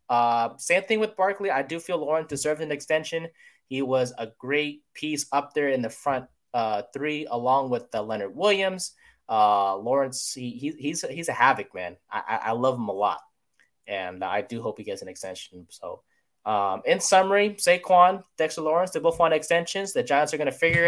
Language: English